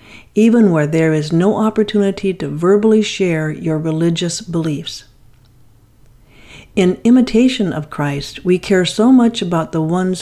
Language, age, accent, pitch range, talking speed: English, 50-69, American, 150-210 Hz, 135 wpm